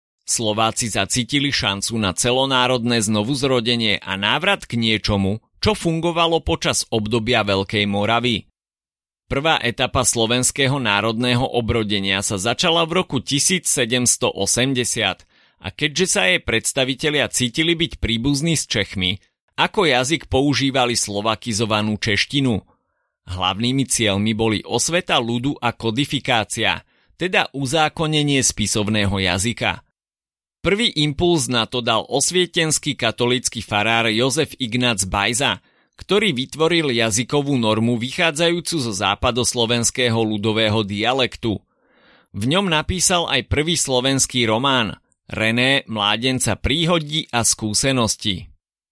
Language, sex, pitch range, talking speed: Slovak, male, 110-140 Hz, 105 wpm